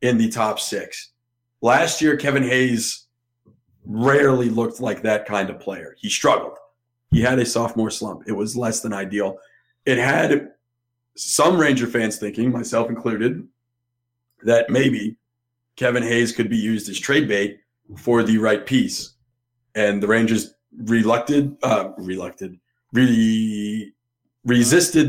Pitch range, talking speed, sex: 115-125 Hz, 135 wpm, male